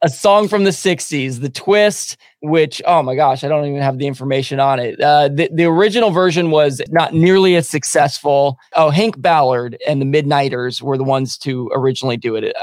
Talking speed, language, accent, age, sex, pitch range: 200 wpm, English, American, 20-39, male, 140-175 Hz